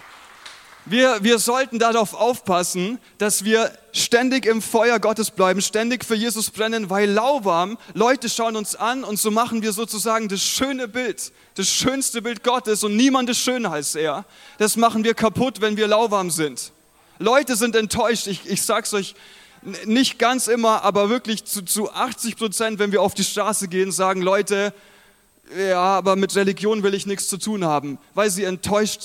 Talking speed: 180 wpm